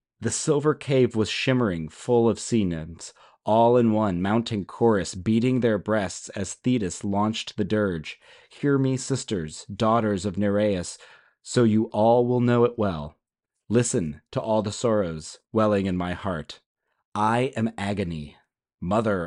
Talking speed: 150 wpm